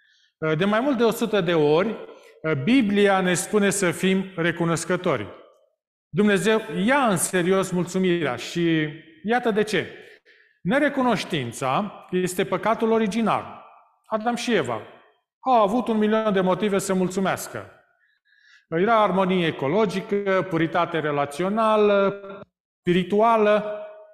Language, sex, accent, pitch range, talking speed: Romanian, male, native, 175-235 Hz, 105 wpm